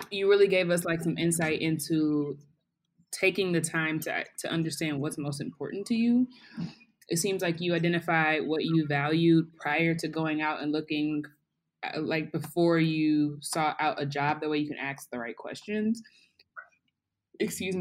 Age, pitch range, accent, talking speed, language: 20-39, 150-170 Hz, American, 170 wpm, English